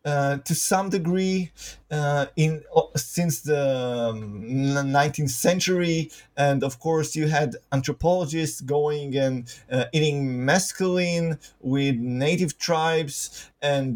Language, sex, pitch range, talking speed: English, male, 135-175 Hz, 110 wpm